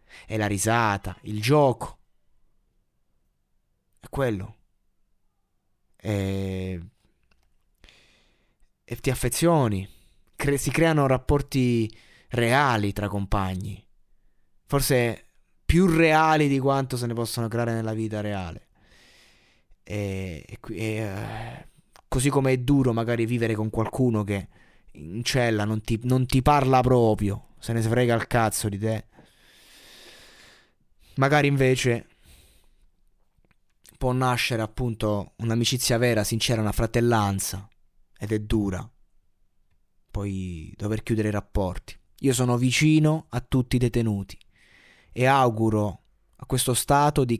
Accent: native